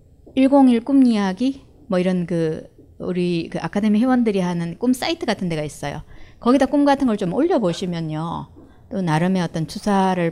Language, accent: Korean, native